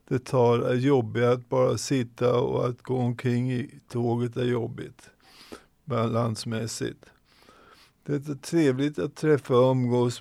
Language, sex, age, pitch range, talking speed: Swedish, male, 50-69, 125-135 Hz, 135 wpm